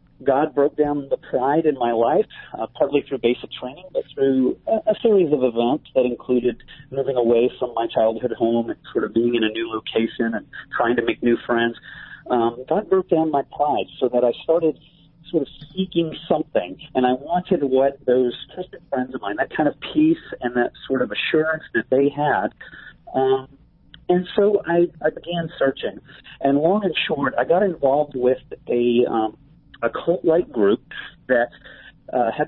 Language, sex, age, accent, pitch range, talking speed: English, male, 40-59, American, 120-160 Hz, 185 wpm